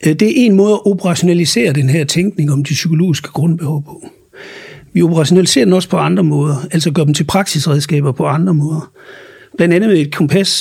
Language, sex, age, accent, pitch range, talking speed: Danish, male, 60-79, native, 150-190 Hz, 190 wpm